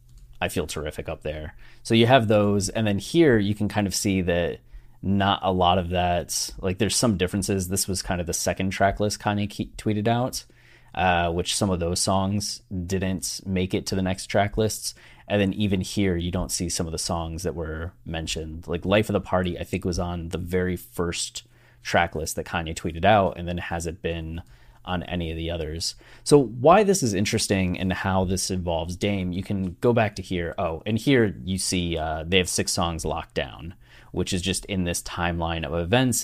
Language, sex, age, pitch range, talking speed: English, male, 20-39, 85-105 Hz, 215 wpm